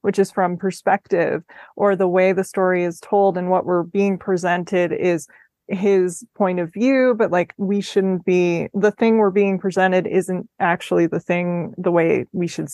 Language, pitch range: English, 185-215 Hz